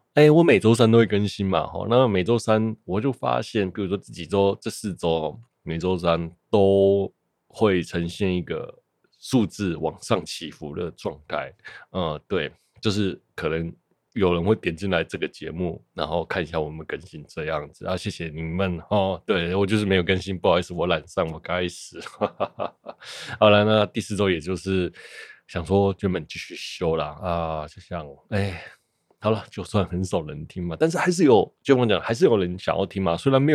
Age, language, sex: 20-39, Chinese, male